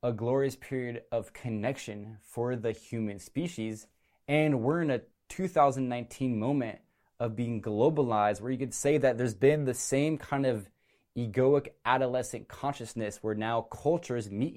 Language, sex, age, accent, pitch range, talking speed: English, male, 20-39, American, 110-135 Hz, 150 wpm